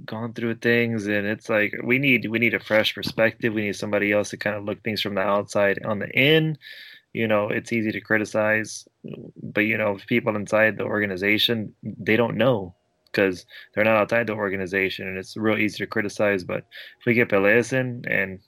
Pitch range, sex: 100-110 Hz, male